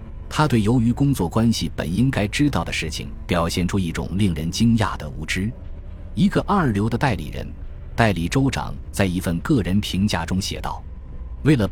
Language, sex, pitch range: Chinese, male, 80-110 Hz